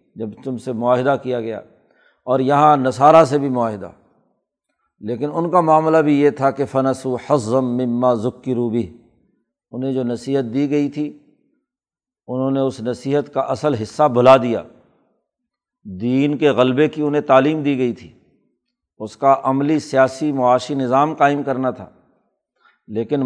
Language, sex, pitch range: Urdu, male, 130-145 Hz